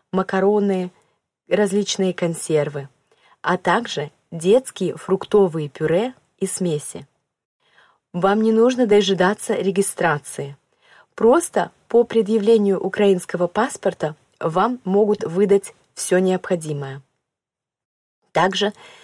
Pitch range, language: 170-200 Hz, Russian